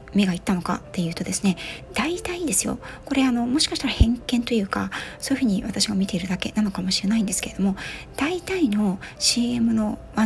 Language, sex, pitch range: Japanese, female, 190-255 Hz